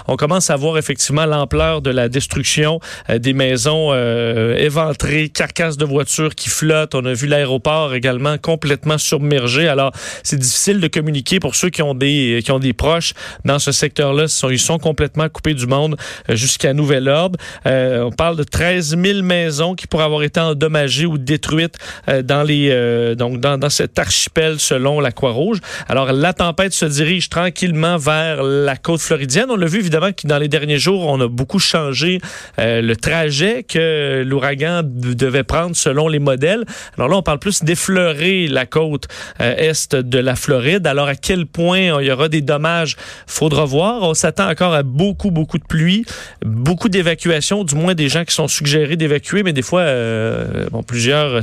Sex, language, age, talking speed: male, French, 40-59, 190 wpm